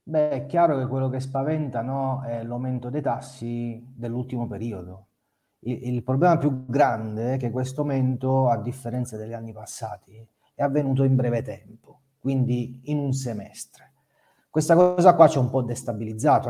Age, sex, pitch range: 40-59, male, 110-135 Hz